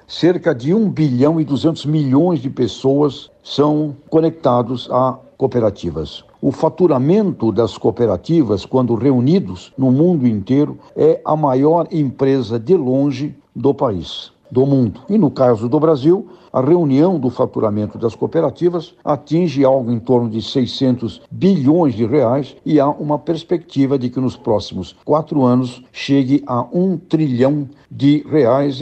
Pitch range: 120-150 Hz